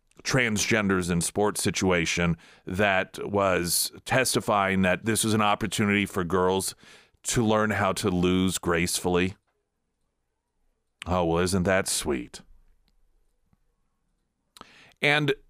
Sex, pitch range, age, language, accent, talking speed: male, 95-120 Hz, 40-59, English, American, 100 wpm